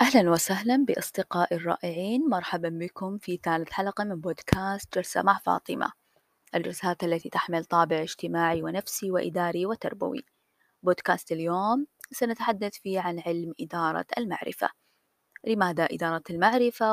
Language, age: Arabic, 20-39